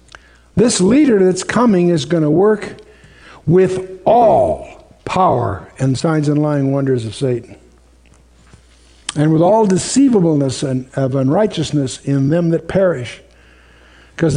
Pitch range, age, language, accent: 125-165 Hz, 60-79, English, American